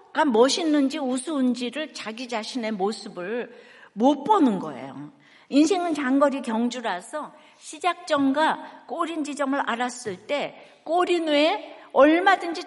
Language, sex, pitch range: Korean, female, 240-320 Hz